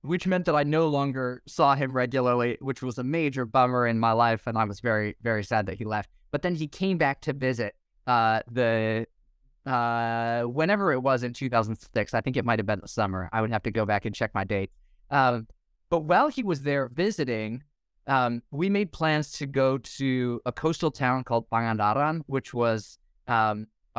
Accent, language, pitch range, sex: American, English, 115-145 Hz, male